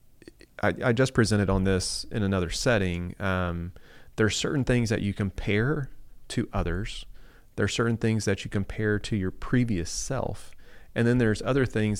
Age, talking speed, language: 30-49, 175 wpm, English